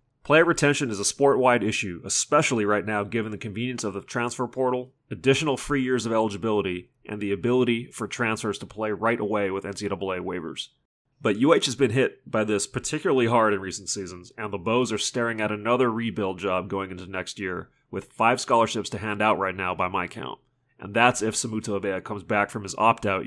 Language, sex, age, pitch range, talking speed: English, male, 30-49, 100-125 Hz, 205 wpm